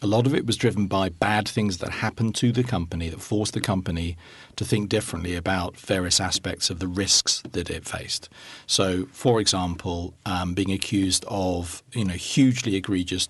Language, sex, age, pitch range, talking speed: English, male, 40-59, 95-115 Hz, 185 wpm